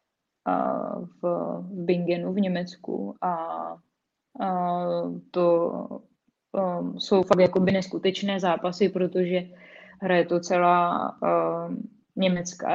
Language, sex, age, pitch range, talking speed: Czech, female, 20-39, 175-190 Hz, 70 wpm